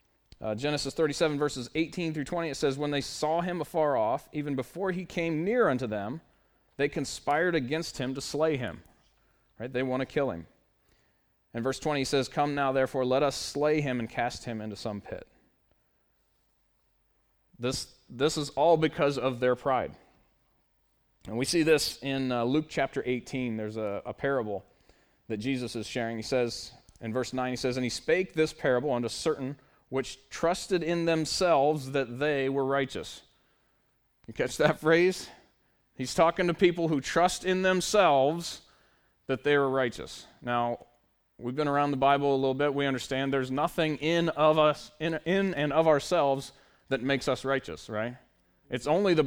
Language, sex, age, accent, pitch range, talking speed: English, male, 30-49, American, 125-160 Hz, 175 wpm